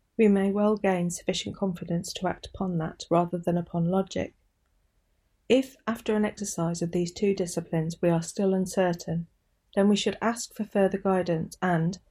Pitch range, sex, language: 170-205 Hz, female, English